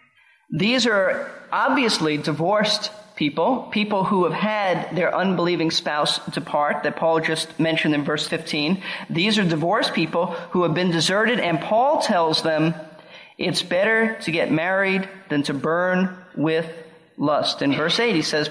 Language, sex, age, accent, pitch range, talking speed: English, male, 40-59, American, 175-255 Hz, 150 wpm